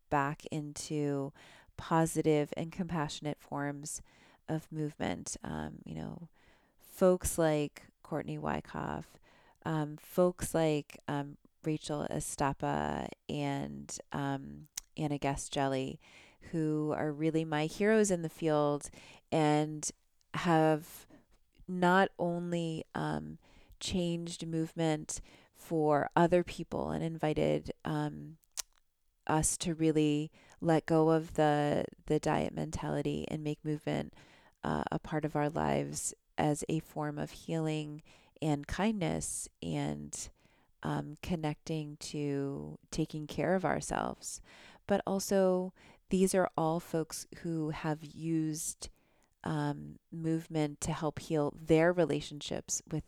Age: 30-49